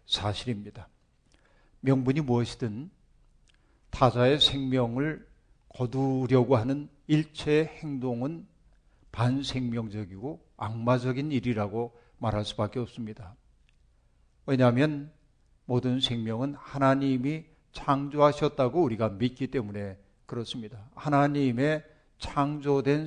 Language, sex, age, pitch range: Korean, male, 50-69, 115-145 Hz